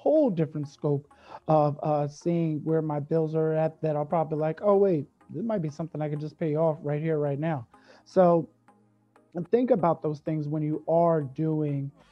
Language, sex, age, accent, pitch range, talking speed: English, male, 30-49, American, 150-180 Hz, 200 wpm